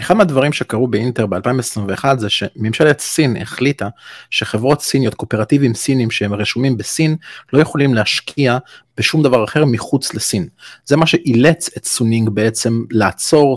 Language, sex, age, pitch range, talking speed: Hebrew, male, 30-49, 105-135 Hz, 135 wpm